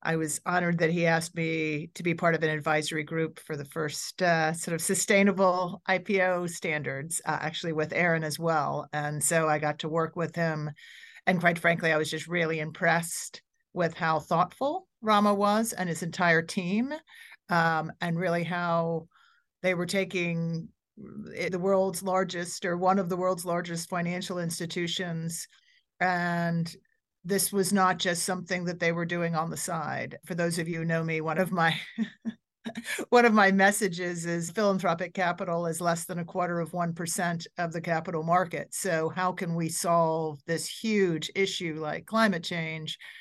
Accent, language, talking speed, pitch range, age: American, English, 170 wpm, 165-185 Hz, 40-59